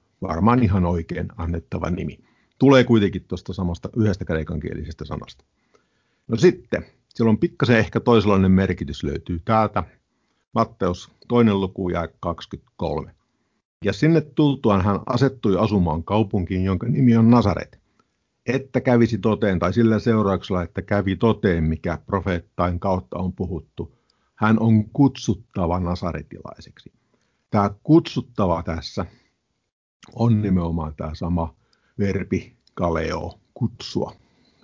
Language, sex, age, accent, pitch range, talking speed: Finnish, male, 50-69, native, 90-115 Hz, 115 wpm